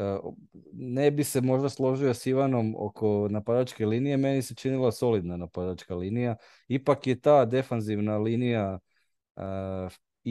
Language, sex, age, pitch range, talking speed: Croatian, male, 20-39, 100-125 Hz, 130 wpm